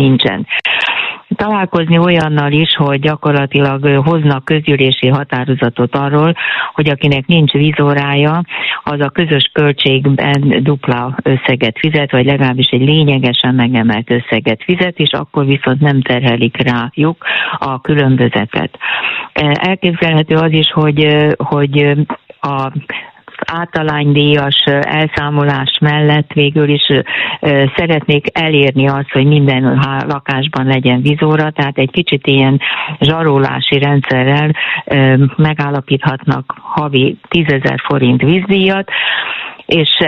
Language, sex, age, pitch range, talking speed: Hungarian, female, 50-69, 135-155 Hz, 100 wpm